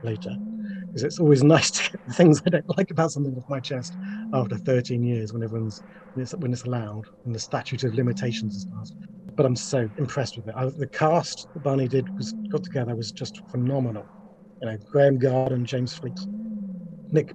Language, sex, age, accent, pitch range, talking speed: English, male, 40-59, British, 130-180 Hz, 205 wpm